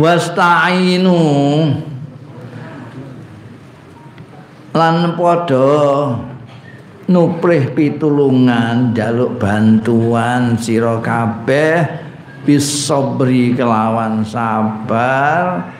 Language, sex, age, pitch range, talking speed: Indonesian, male, 50-69, 115-150 Hz, 40 wpm